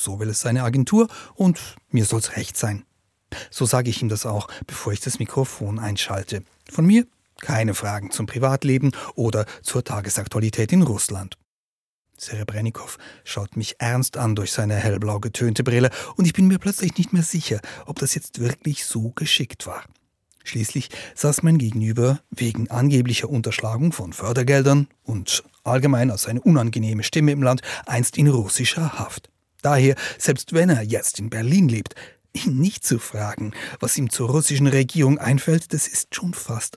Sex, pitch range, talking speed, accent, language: male, 110-140 Hz, 165 wpm, German, German